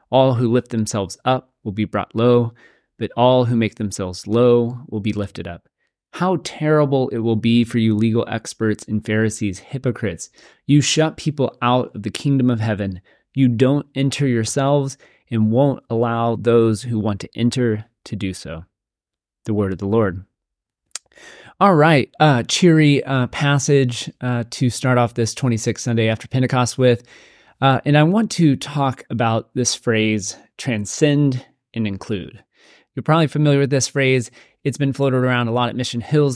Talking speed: 170 wpm